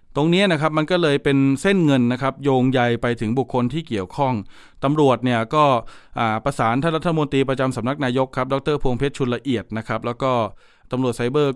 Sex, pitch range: male, 120-140 Hz